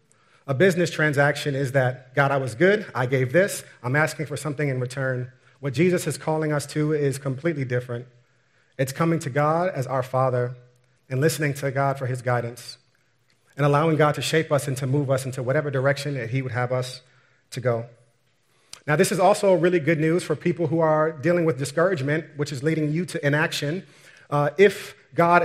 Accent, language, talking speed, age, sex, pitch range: American, English, 200 wpm, 30-49, male, 135-165 Hz